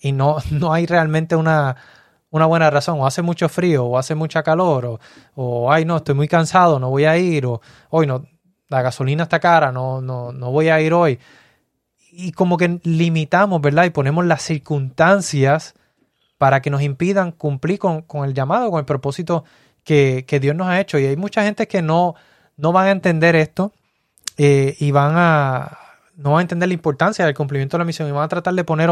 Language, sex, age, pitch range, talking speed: Spanish, male, 20-39, 140-170 Hz, 210 wpm